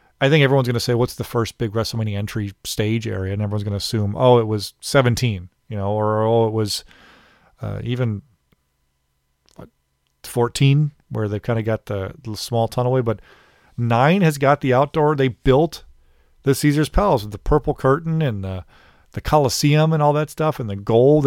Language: English